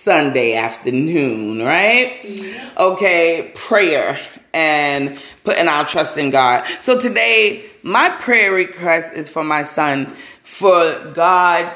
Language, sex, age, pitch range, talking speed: English, female, 20-39, 145-185 Hz, 110 wpm